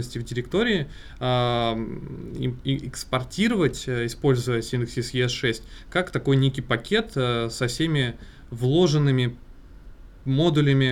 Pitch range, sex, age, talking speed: 120-140 Hz, male, 20-39, 75 wpm